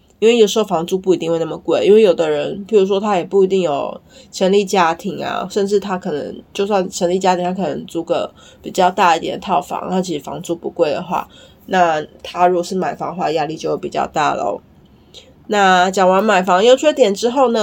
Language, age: Chinese, 20-39